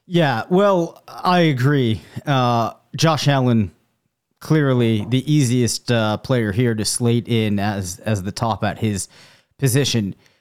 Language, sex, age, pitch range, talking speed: English, male, 30-49, 120-145 Hz, 135 wpm